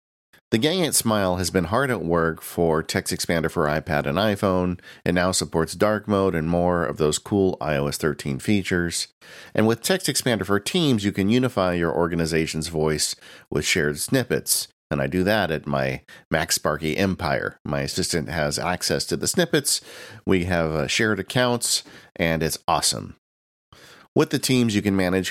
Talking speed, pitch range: 170 wpm, 80-110 Hz